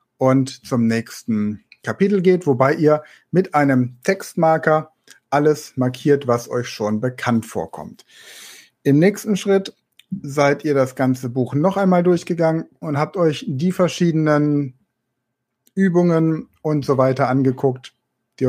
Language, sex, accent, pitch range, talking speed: German, male, German, 120-160 Hz, 125 wpm